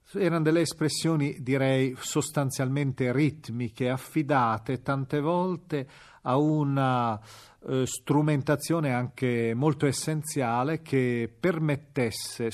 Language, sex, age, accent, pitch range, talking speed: Italian, male, 40-59, native, 120-160 Hz, 80 wpm